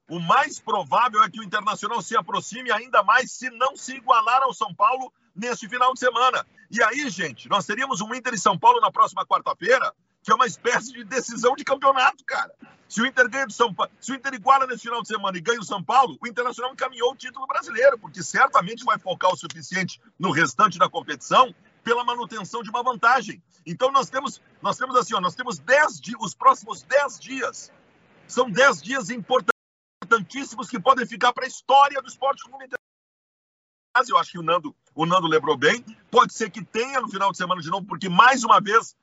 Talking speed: 210 wpm